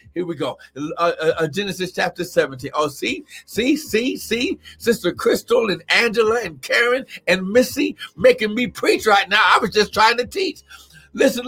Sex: male